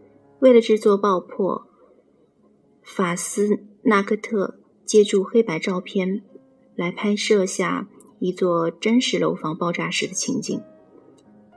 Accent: native